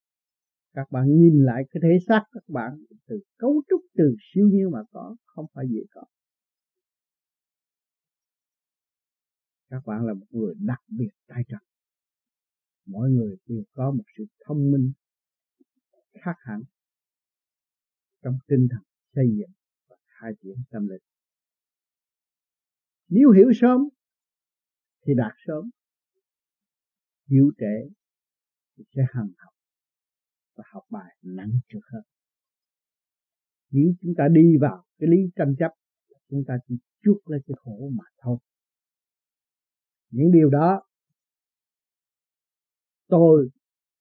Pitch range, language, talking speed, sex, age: 125-205 Hz, Vietnamese, 120 wpm, male, 50-69